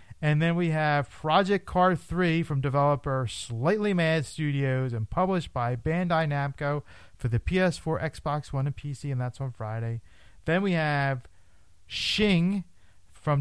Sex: male